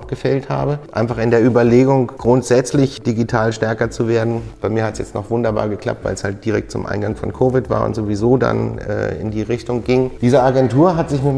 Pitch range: 105-125 Hz